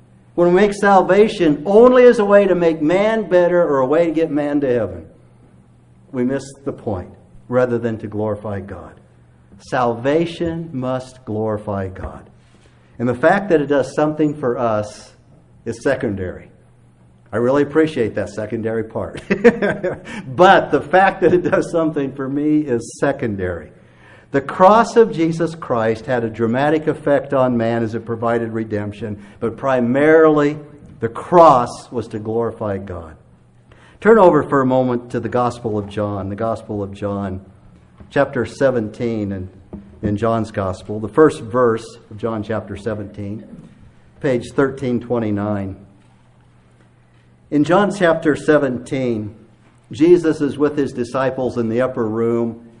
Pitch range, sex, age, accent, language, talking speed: 105-145 Hz, male, 60-79, American, English, 145 wpm